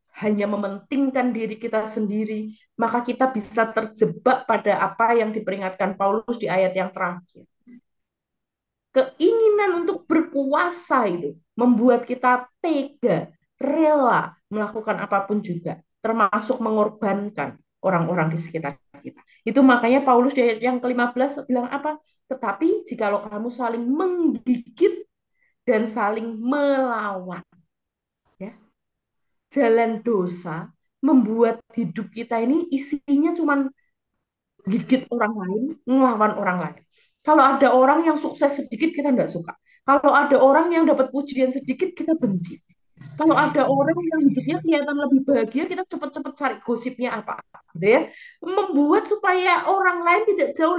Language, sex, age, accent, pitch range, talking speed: Indonesian, female, 20-39, native, 215-285 Hz, 125 wpm